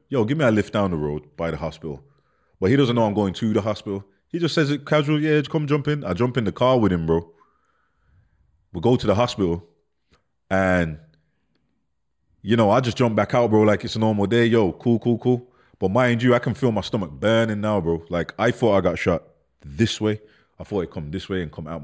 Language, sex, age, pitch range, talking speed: English, male, 20-39, 80-110 Hz, 240 wpm